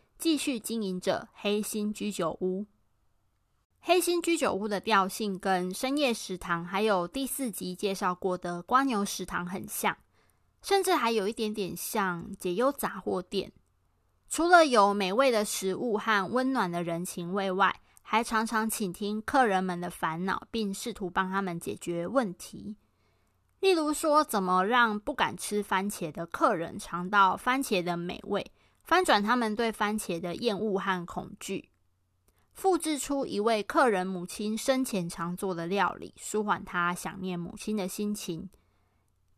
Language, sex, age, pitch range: Chinese, female, 20-39, 180-235 Hz